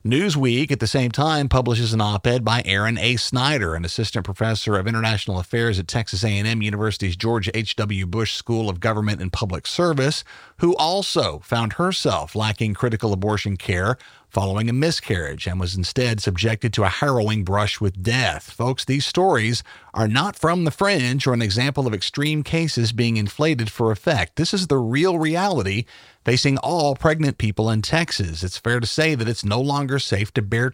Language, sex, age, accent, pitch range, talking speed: English, male, 40-59, American, 105-135 Hz, 180 wpm